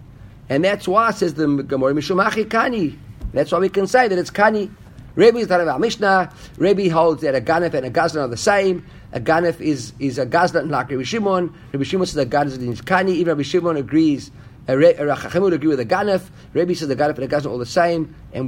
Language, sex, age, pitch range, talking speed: English, male, 50-69, 125-170 Hz, 230 wpm